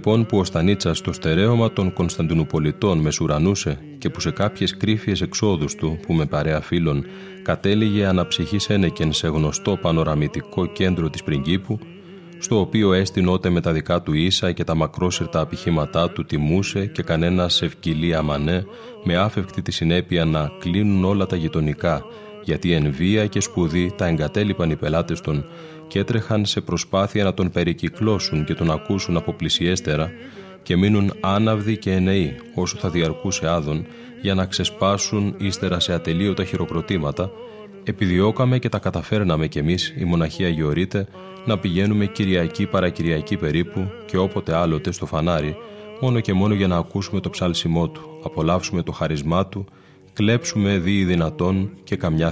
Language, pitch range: Greek, 80-100 Hz